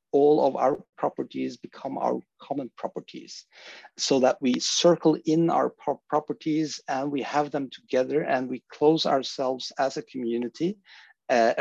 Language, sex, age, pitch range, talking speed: English, male, 50-69, 115-150 Hz, 145 wpm